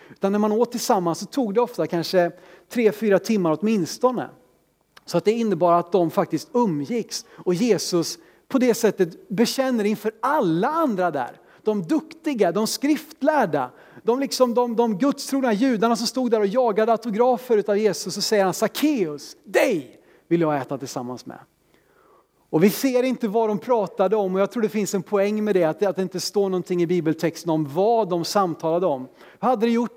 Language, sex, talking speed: Swedish, male, 185 wpm